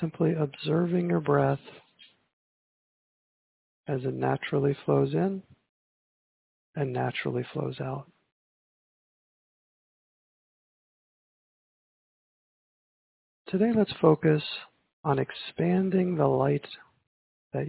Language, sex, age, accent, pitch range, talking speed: English, male, 40-59, American, 135-160 Hz, 70 wpm